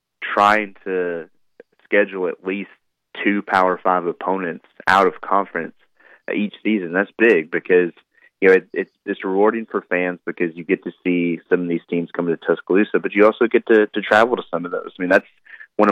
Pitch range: 85-100 Hz